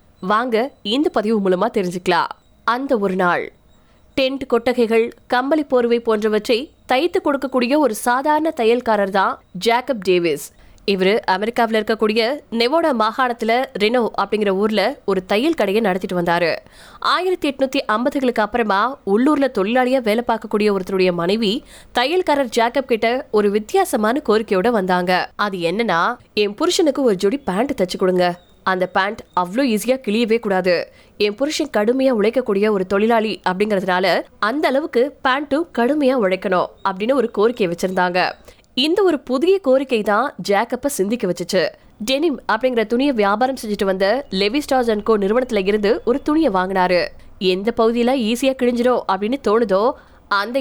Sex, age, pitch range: female, 20-39, 200-260 Hz